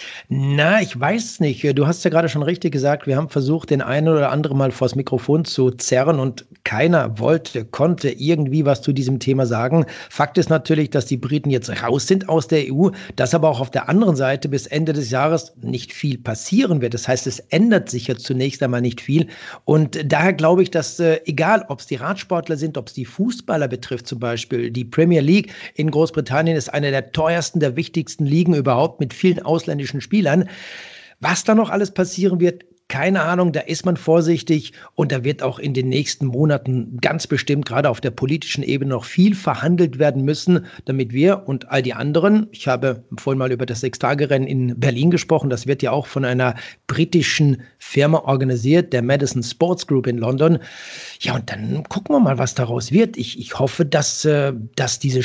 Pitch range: 130-165 Hz